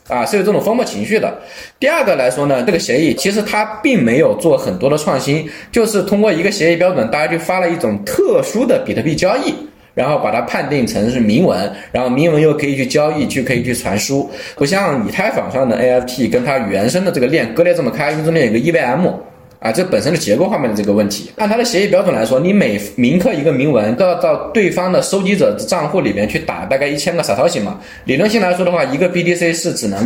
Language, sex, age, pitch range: Chinese, male, 20-39, 135-195 Hz